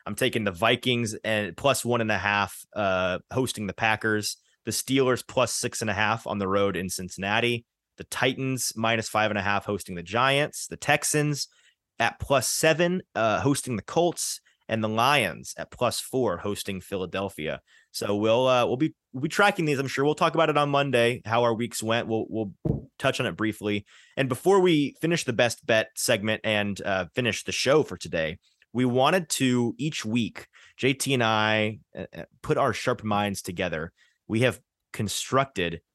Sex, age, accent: male, 30-49, American